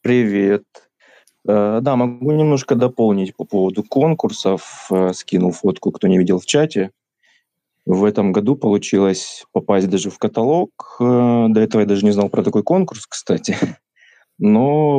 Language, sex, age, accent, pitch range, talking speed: Russian, male, 20-39, native, 95-130 Hz, 135 wpm